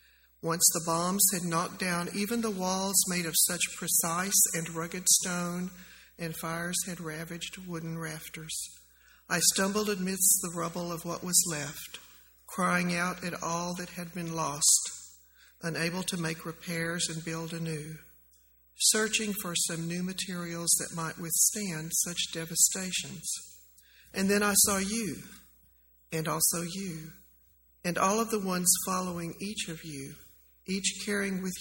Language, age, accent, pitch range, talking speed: English, 50-69, American, 165-190 Hz, 145 wpm